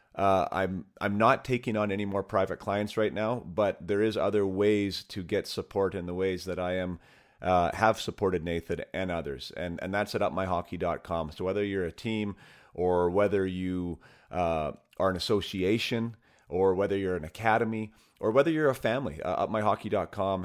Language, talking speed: English, 180 wpm